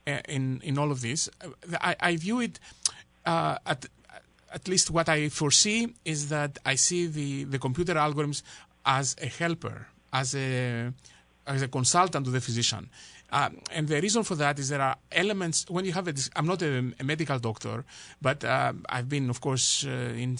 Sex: male